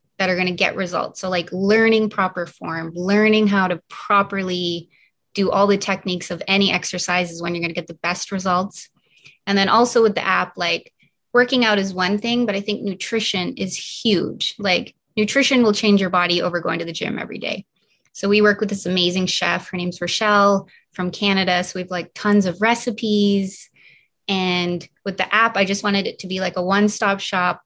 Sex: female